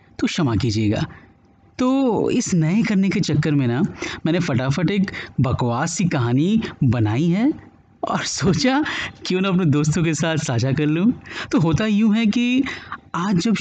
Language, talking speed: Hindi, 165 wpm